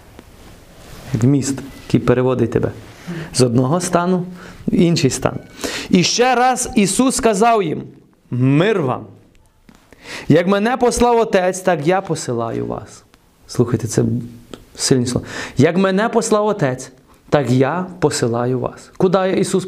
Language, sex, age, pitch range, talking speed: Ukrainian, male, 30-49, 130-205 Hz, 120 wpm